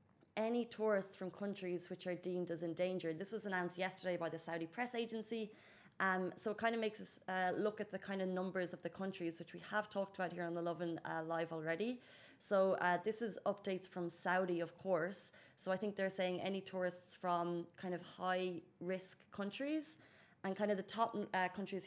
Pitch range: 175-200 Hz